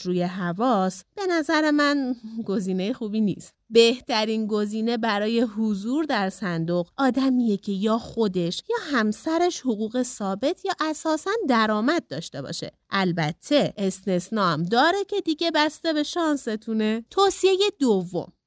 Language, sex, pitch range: Persian, female, 200-310 Hz